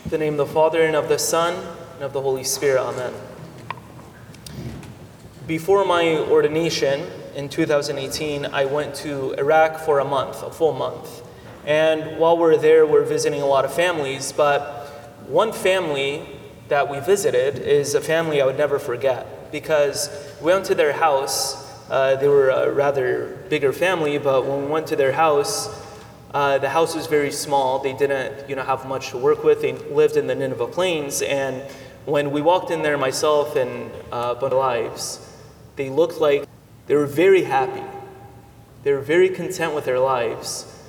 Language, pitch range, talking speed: English, 140-185 Hz, 175 wpm